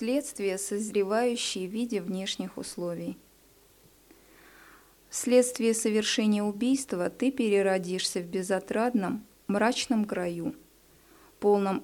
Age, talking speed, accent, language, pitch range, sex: 20-39, 80 wpm, native, Russian, 185-240 Hz, female